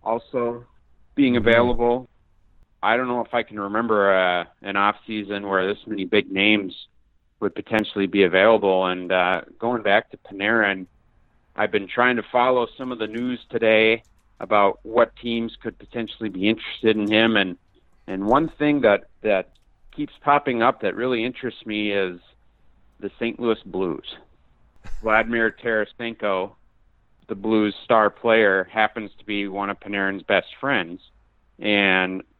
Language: English